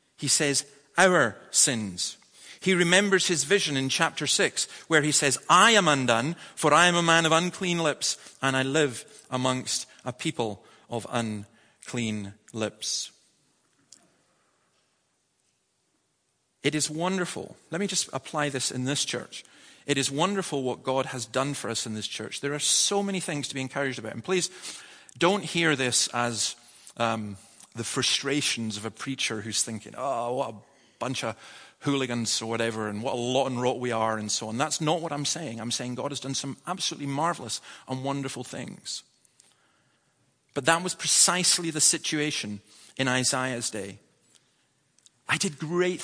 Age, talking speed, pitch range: 40-59, 165 wpm, 115-160 Hz